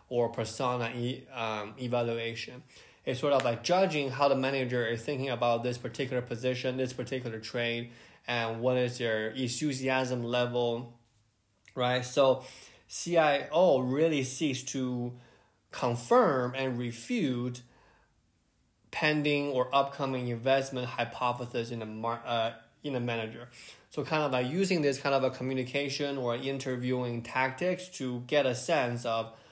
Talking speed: 130 wpm